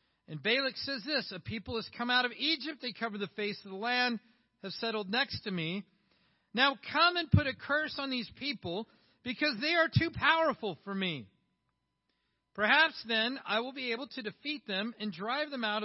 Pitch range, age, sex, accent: 220-295 Hz, 40-59, male, American